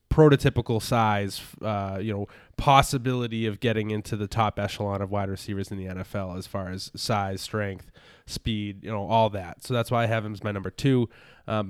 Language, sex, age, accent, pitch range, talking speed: English, male, 20-39, American, 100-115 Hz, 200 wpm